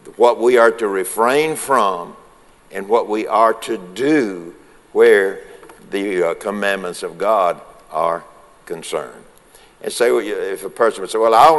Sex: male